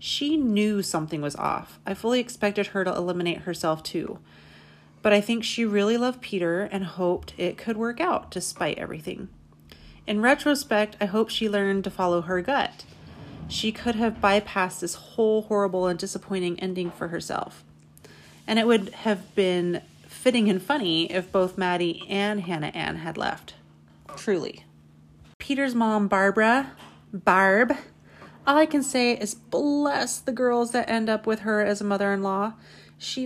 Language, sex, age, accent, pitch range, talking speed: English, female, 30-49, American, 180-230 Hz, 160 wpm